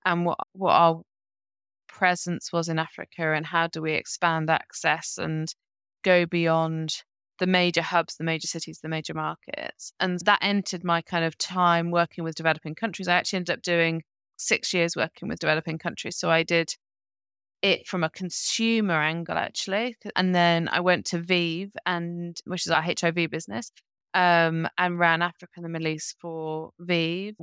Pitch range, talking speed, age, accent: 165-200 Hz, 175 wpm, 20-39, British